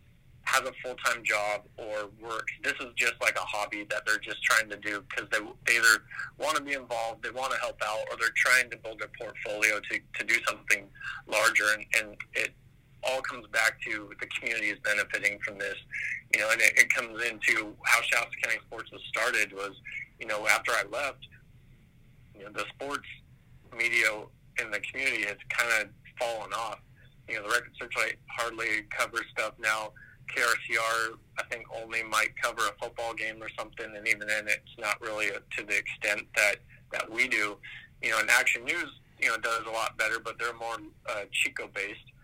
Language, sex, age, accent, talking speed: English, male, 30-49, American, 195 wpm